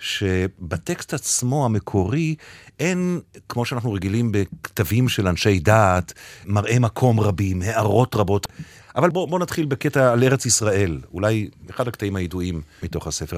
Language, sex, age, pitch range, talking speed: Hebrew, male, 50-69, 95-130 Hz, 135 wpm